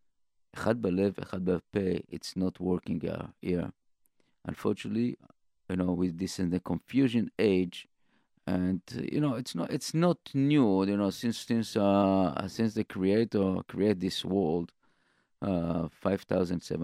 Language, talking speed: English, 120 wpm